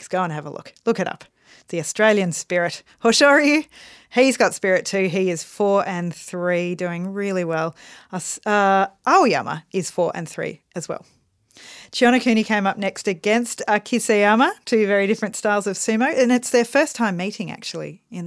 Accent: Australian